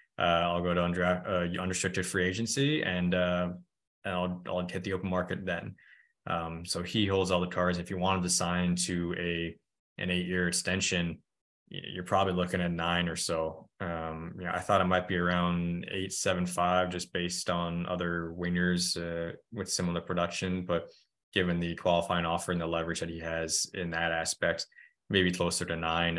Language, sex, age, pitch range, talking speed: English, male, 20-39, 85-90 Hz, 190 wpm